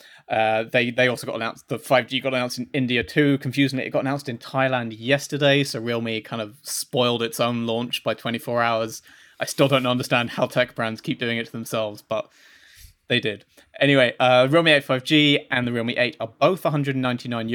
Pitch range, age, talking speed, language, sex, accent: 110-130 Hz, 20-39, 200 wpm, English, male, British